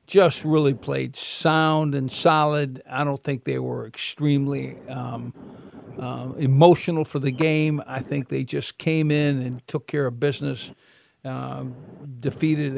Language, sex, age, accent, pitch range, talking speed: English, male, 50-69, American, 130-155 Hz, 145 wpm